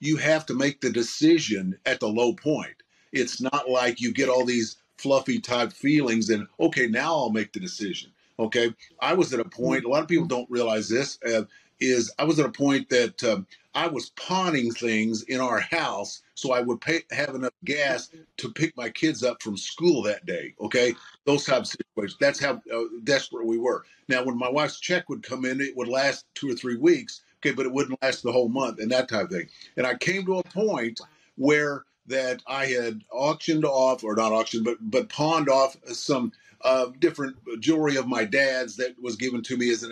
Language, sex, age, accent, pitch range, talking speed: English, male, 50-69, American, 120-150 Hz, 215 wpm